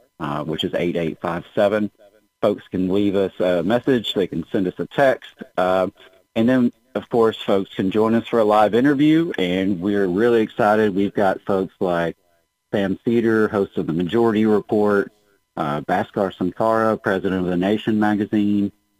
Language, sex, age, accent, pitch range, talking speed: English, male, 40-59, American, 90-110 Hz, 165 wpm